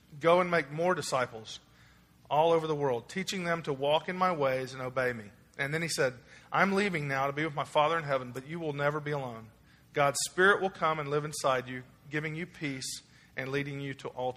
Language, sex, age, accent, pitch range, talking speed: English, male, 40-59, American, 130-160 Hz, 230 wpm